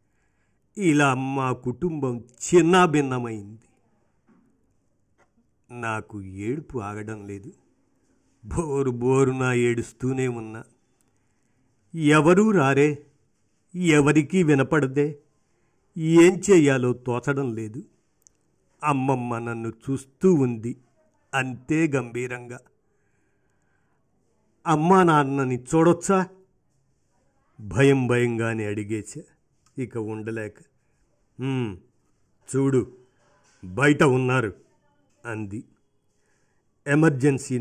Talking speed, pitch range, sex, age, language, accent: 65 wpm, 115-140 Hz, male, 50-69, Telugu, native